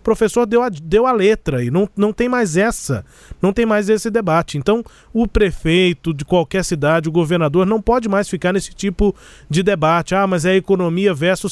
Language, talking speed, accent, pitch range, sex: Portuguese, 205 wpm, Brazilian, 165-210 Hz, male